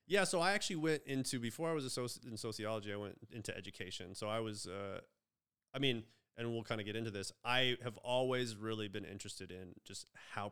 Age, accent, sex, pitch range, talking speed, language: 30-49, American, male, 105-125 Hz, 215 wpm, English